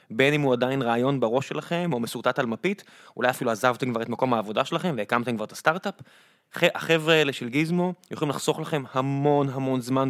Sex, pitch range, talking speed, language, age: male, 125-160 Hz, 195 wpm, Hebrew, 20-39